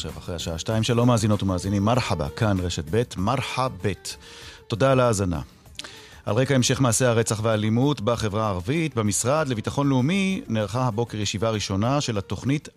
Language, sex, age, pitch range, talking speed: Hebrew, male, 40-59, 90-125 Hz, 155 wpm